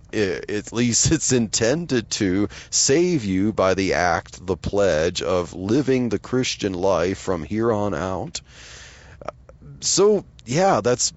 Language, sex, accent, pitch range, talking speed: English, male, American, 105-150 Hz, 130 wpm